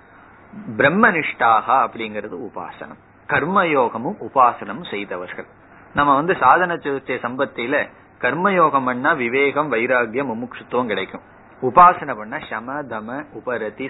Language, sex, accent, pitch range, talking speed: Tamil, male, native, 120-165 Hz, 100 wpm